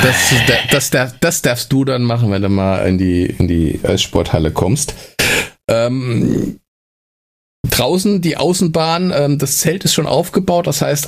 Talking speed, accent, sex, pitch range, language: 150 wpm, German, male, 125-160 Hz, German